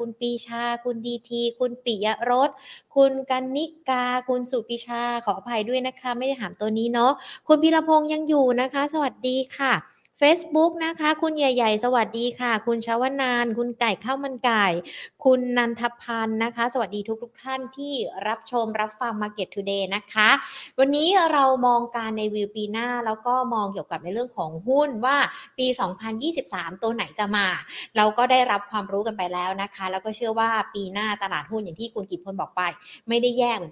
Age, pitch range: 20-39, 205-260 Hz